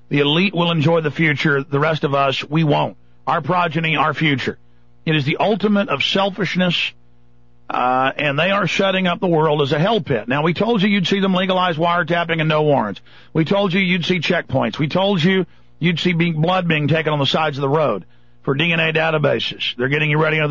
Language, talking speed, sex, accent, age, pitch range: English, 215 wpm, male, American, 50-69, 140-180 Hz